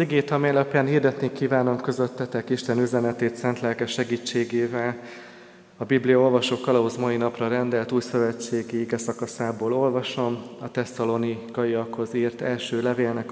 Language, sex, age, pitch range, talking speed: Hungarian, male, 30-49, 115-140 Hz, 120 wpm